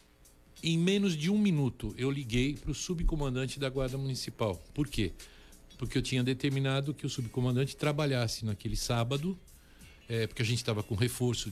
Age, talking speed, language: 60-79, 160 wpm, Portuguese